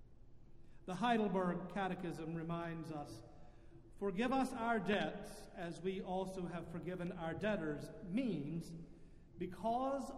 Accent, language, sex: American, English, male